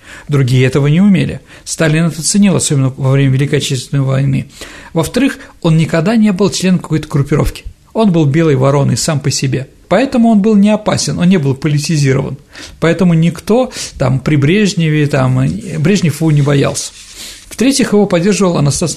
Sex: male